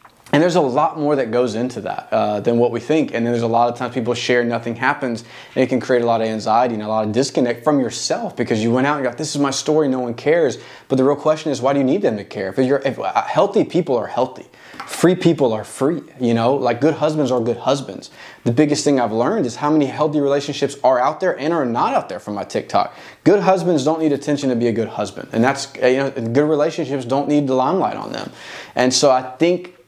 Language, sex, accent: English, male, American